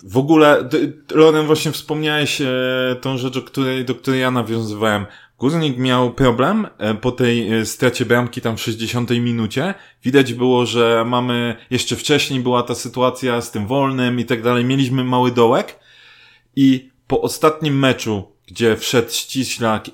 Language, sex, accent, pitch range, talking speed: Polish, male, native, 115-135 Hz, 155 wpm